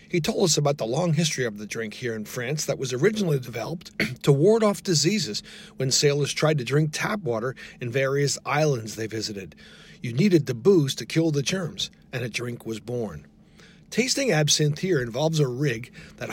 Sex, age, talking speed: male, 40-59, 195 wpm